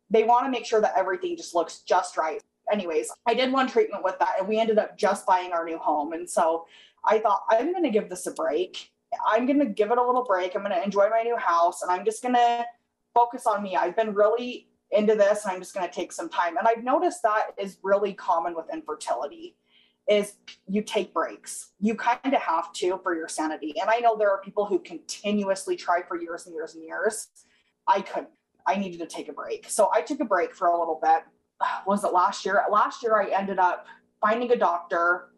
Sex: female